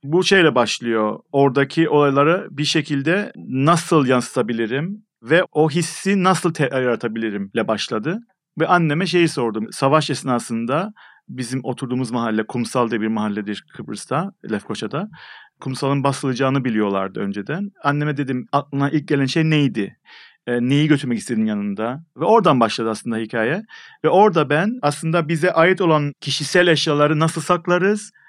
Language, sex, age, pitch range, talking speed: Turkish, male, 40-59, 125-165 Hz, 135 wpm